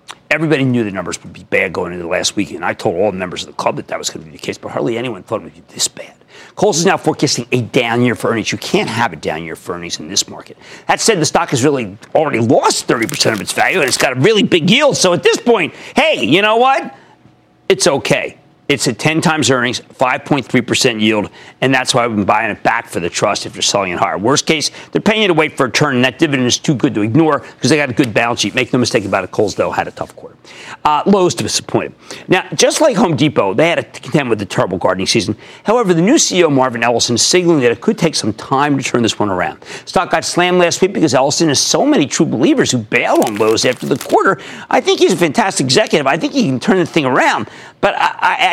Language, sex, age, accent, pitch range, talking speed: English, male, 50-69, American, 120-175 Hz, 270 wpm